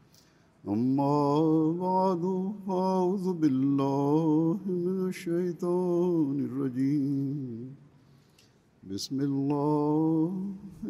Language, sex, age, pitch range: Russian, male, 60-79, 140-175 Hz